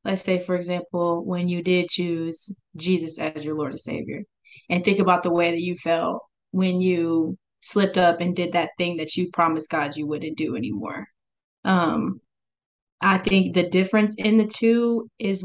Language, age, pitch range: English, 20-39, 175-215 Hz